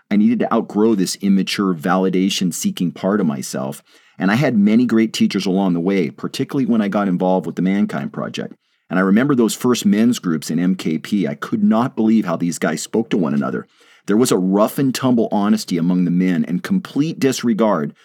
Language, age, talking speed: English, 40-59, 195 wpm